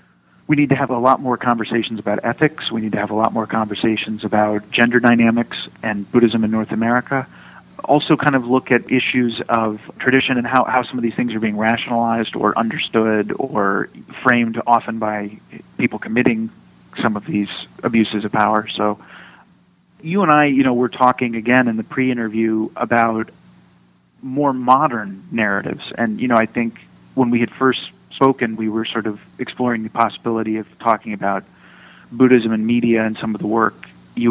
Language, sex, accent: English, male, American